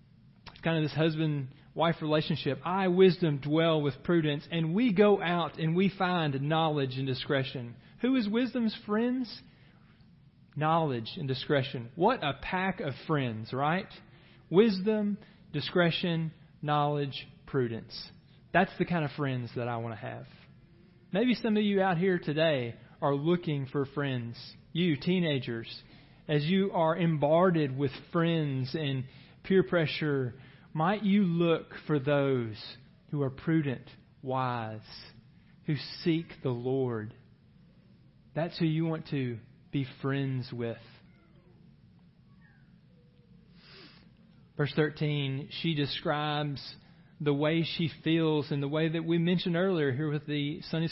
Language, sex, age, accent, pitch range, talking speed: English, male, 40-59, American, 135-170 Hz, 130 wpm